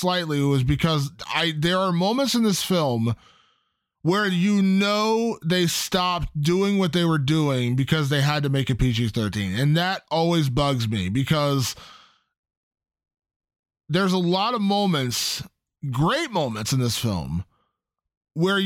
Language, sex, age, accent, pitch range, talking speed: English, male, 20-39, American, 150-195 Hz, 140 wpm